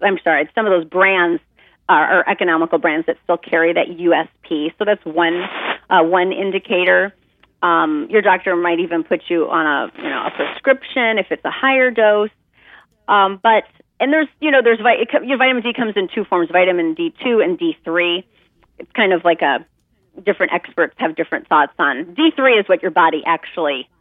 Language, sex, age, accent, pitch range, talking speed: English, female, 30-49, American, 175-235 Hz, 190 wpm